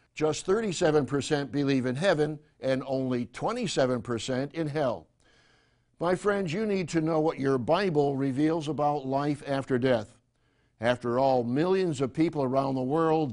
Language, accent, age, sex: English, American, 60-79, male